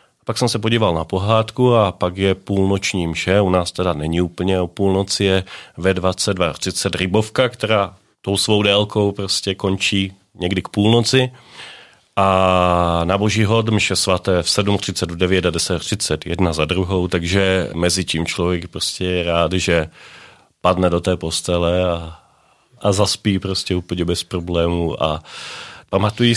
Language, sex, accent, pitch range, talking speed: Czech, male, native, 90-105 Hz, 150 wpm